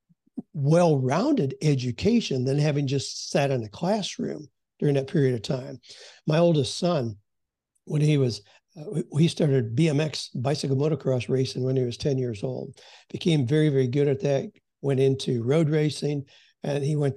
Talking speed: 160 wpm